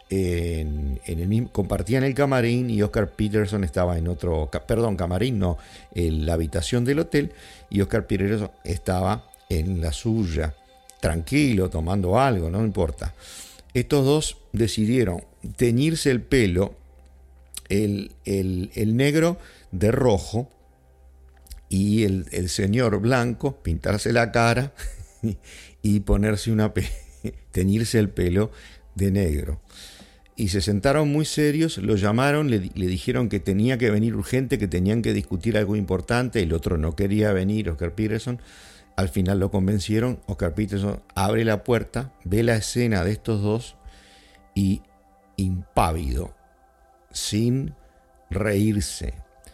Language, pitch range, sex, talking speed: English, 90-115 Hz, male, 125 wpm